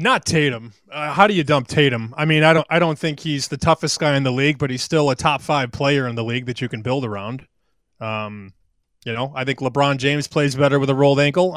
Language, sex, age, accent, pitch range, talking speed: English, male, 20-39, American, 140-185 Hz, 260 wpm